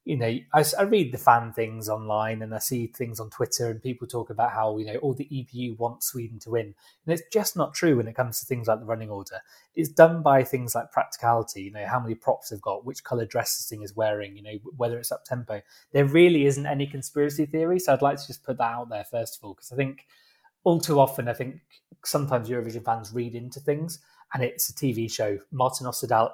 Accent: British